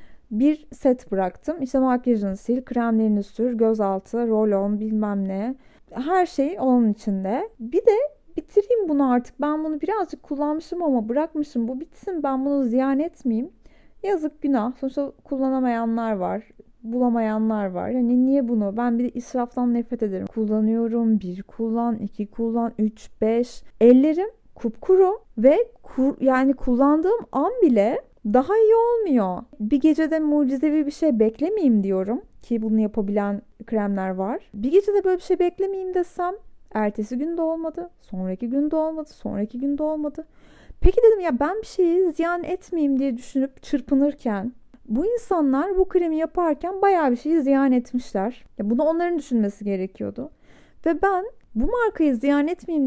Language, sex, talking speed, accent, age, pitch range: Turkish, female, 145 wpm, native, 30-49, 225-315 Hz